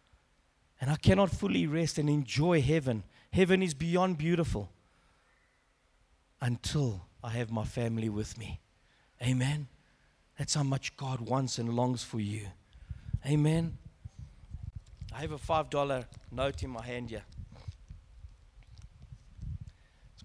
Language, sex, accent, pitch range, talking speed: English, male, South African, 100-160 Hz, 120 wpm